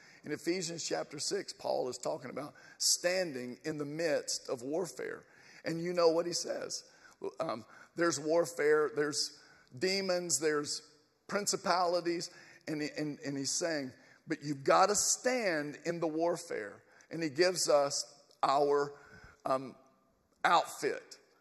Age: 50-69